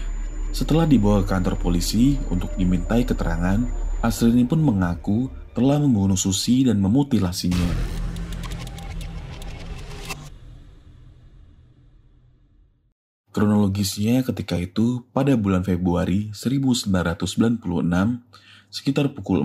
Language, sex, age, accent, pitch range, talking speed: Indonesian, male, 30-49, native, 90-110 Hz, 75 wpm